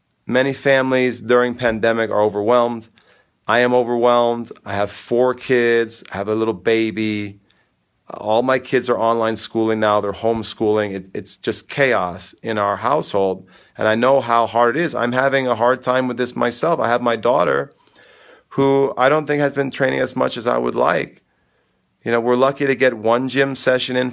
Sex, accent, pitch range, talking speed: male, American, 105-125 Hz, 185 wpm